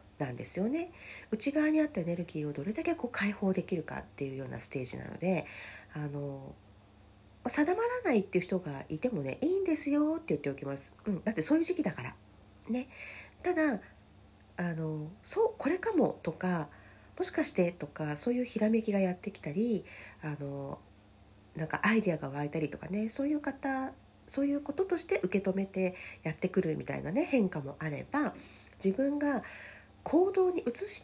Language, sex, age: Japanese, female, 40-59